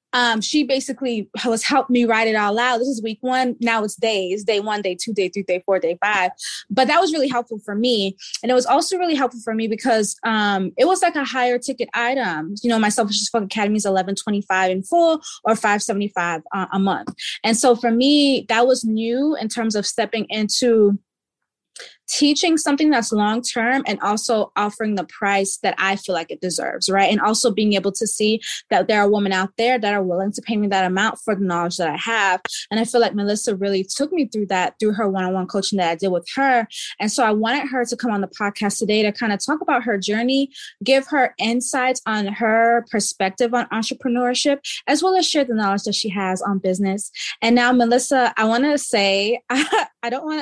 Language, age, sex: English, 20-39, female